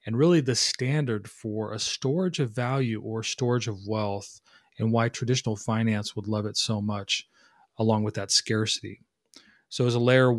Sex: male